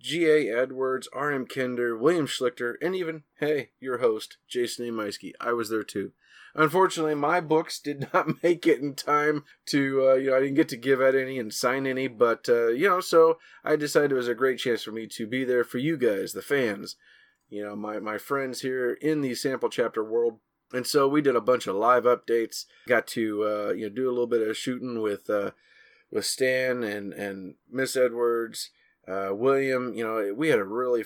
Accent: American